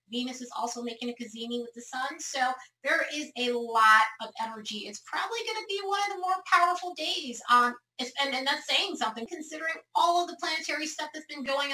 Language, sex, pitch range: English, female, 220-280 Hz